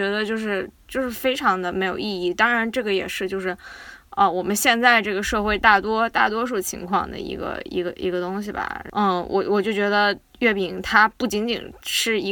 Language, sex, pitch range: Chinese, female, 220-320 Hz